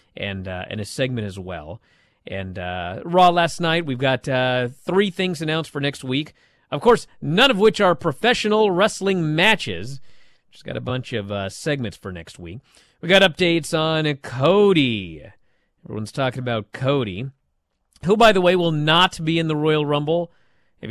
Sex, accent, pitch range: male, American, 115-170 Hz